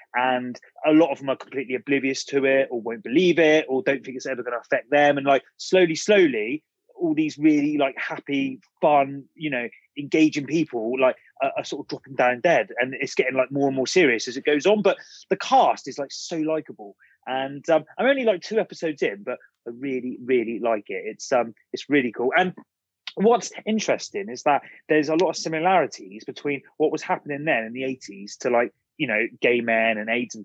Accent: British